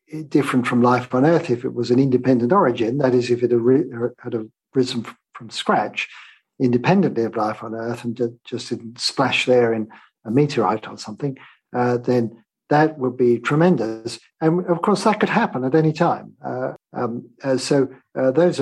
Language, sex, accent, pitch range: English, male, British, 120-145 Hz